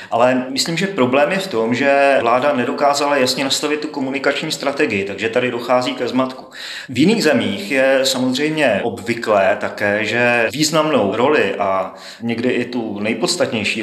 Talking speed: 150 wpm